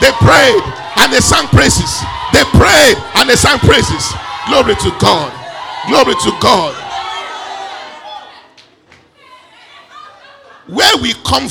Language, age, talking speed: English, 40-59, 110 wpm